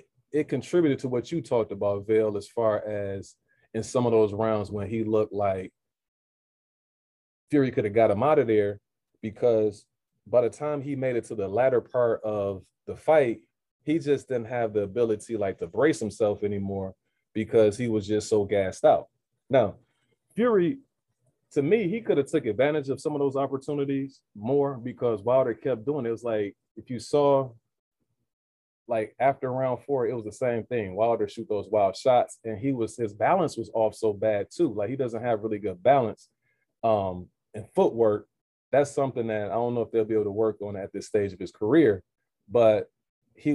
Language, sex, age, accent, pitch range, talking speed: English, male, 30-49, American, 105-130 Hz, 195 wpm